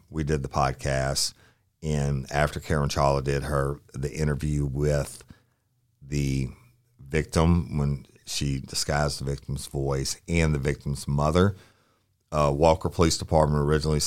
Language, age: English, 50-69